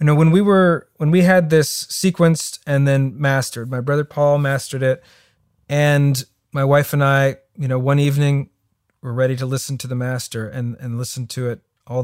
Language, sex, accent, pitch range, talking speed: English, male, American, 125-150 Hz, 200 wpm